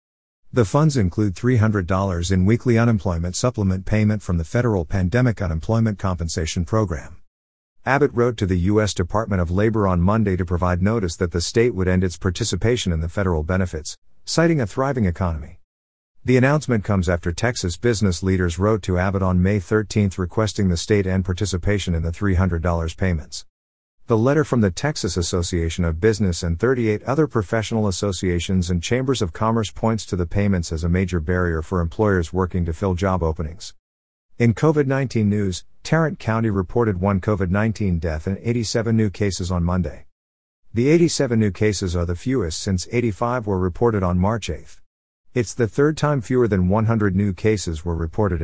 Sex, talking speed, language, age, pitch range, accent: male, 170 wpm, English, 50-69, 90-110 Hz, American